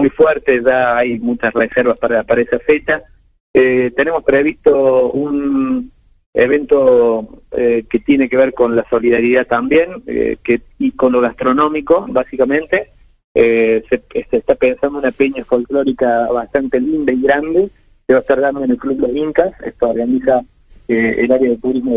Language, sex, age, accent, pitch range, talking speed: Spanish, male, 30-49, Argentinian, 120-140 Hz, 165 wpm